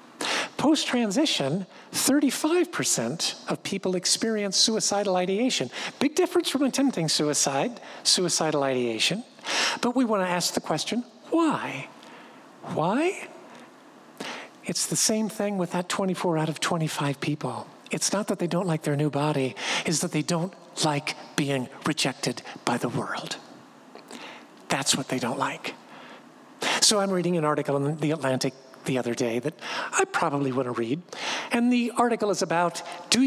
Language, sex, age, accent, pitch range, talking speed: English, male, 50-69, American, 160-250 Hz, 145 wpm